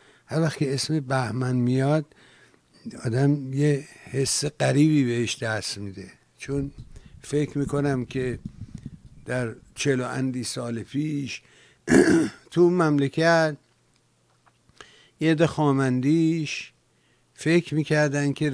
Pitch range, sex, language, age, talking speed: 120-145 Hz, male, English, 60-79, 90 wpm